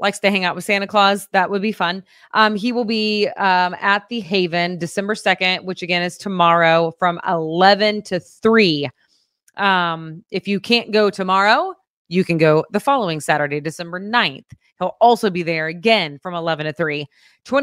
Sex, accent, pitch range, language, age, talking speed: female, American, 180-235 Hz, English, 20-39, 170 wpm